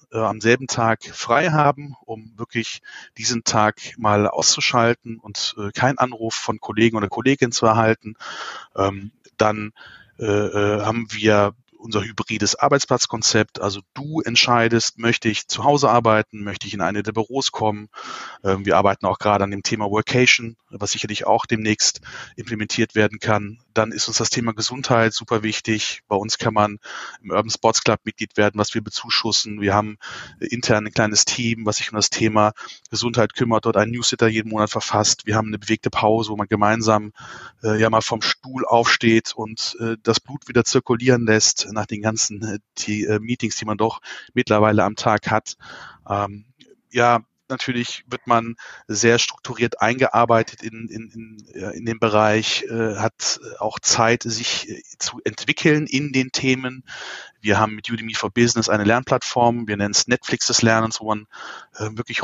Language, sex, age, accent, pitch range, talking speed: German, male, 30-49, German, 105-120 Hz, 165 wpm